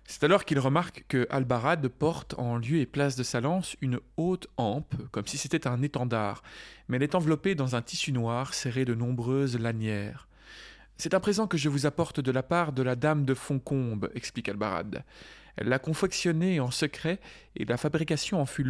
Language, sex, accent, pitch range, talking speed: French, male, French, 120-150 Hz, 205 wpm